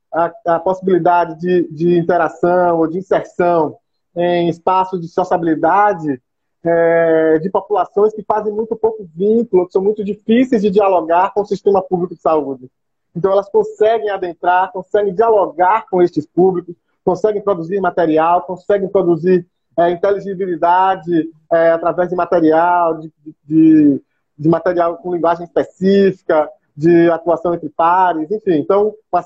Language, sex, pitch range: Portuguese, male, 160-190 Hz